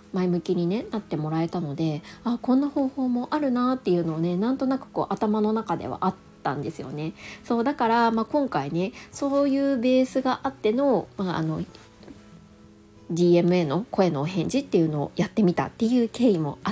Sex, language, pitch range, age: female, Japanese, 170-270 Hz, 20-39